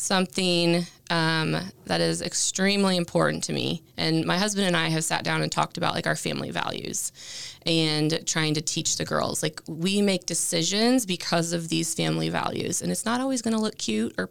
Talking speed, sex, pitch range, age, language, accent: 195 wpm, female, 155-180 Hz, 20-39, English, American